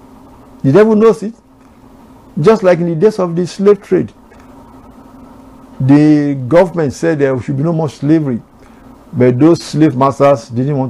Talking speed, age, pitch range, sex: 155 wpm, 60-79, 130-170 Hz, male